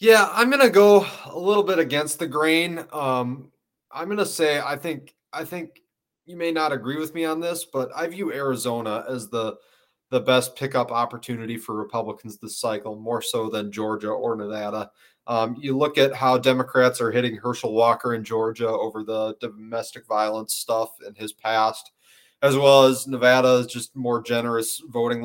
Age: 20-39